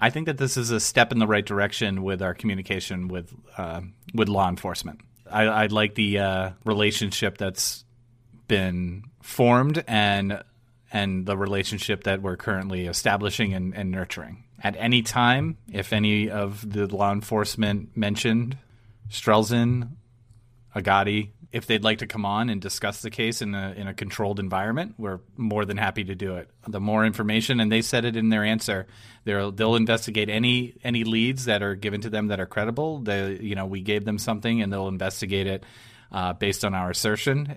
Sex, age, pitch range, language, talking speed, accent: male, 30-49, 100-115 Hz, English, 180 wpm, American